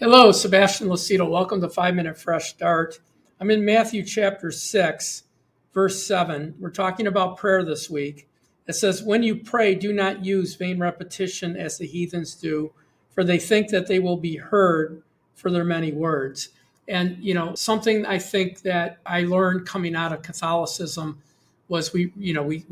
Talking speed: 170 wpm